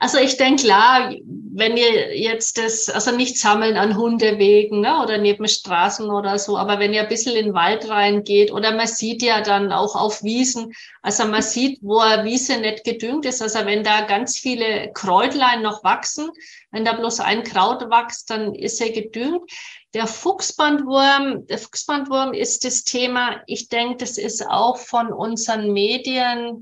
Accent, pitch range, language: German, 215-260 Hz, German